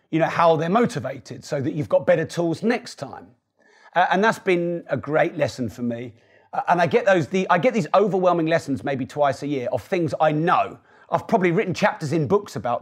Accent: British